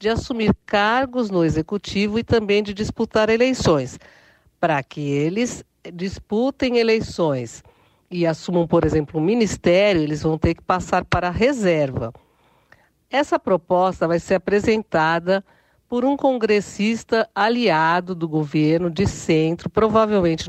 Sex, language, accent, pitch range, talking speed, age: female, Portuguese, Brazilian, 170-220 Hz, 125 wpm, 50-69